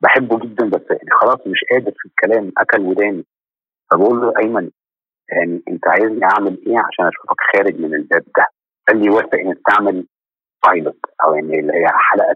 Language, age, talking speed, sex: Arabic, 50-69, 170 wpm, male